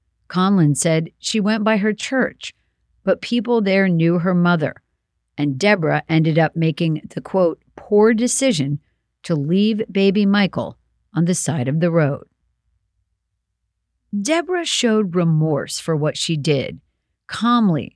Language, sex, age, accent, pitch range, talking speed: English, female, 50-69, American, 150-205 Hz, 135 wpm